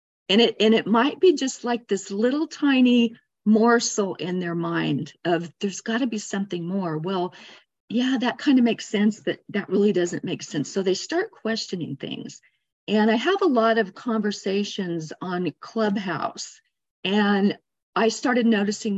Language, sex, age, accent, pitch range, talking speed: English, female, 50-69, American, 180-225 Hz, 170 wpm